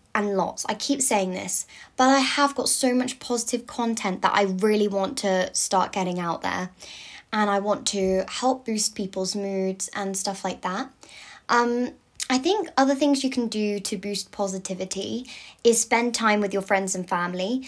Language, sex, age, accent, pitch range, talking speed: English, female, 10-29, British, 195-255 Hz, 185 wpm